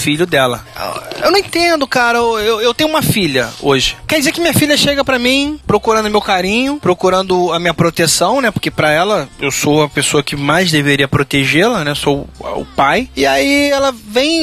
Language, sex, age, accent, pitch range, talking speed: Portuguese, male, 20-39, Brazilian, 150-205 Hz, 205 wpm